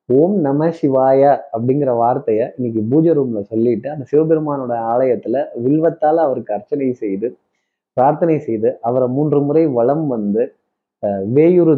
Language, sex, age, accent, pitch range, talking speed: Tamil, male, 20-39, native, 125-170 Hz, 110 wpm